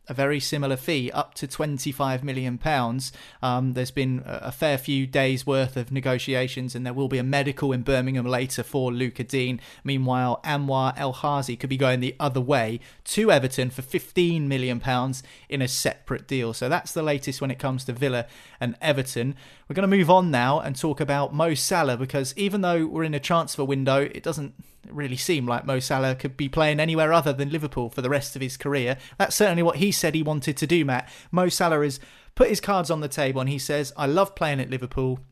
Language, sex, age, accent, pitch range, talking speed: English, male, 30-49, British, 130-155 Hz, 210 wpm